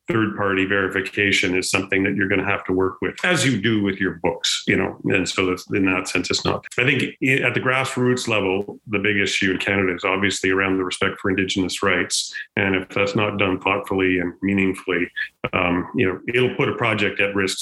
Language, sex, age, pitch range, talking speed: English, male, 40-59, 95-105 Hz, 220 wpm